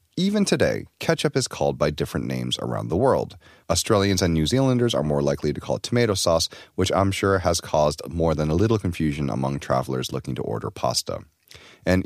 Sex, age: male, 30-49